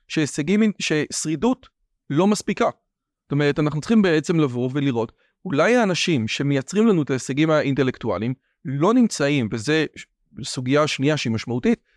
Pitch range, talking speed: 135-195 Hz, 125 wpm